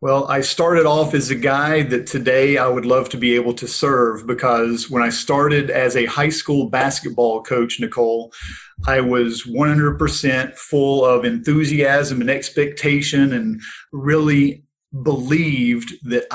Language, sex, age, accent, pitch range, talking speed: English, male, 40-59, American, 125-145 Hz, 145 wpm